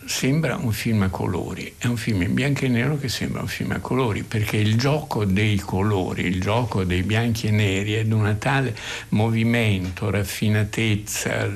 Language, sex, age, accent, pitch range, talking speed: Italian, male, 60-79, native, 100-115 Hz, 180 wpm